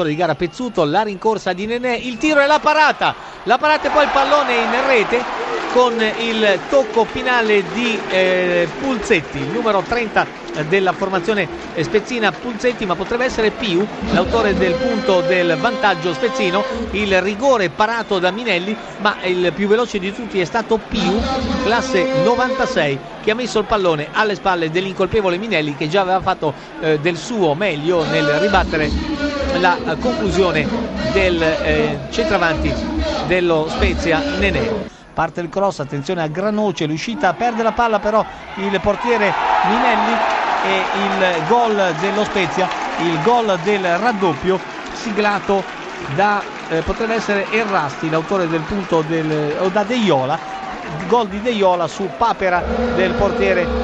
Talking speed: 150 wpm